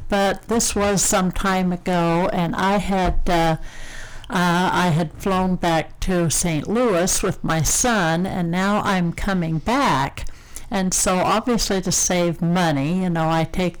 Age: 60-79